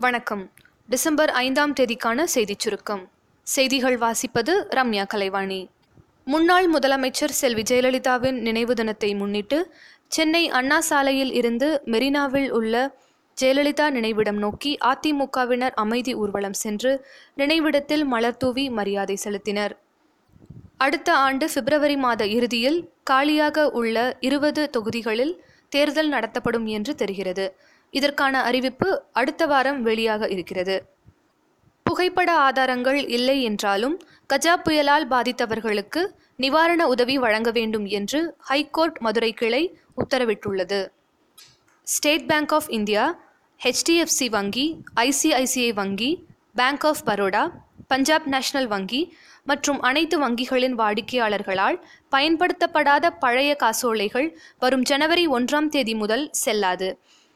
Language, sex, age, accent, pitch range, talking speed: Tamil, female, 20-39, native, 225-295 Hz, 100 wpm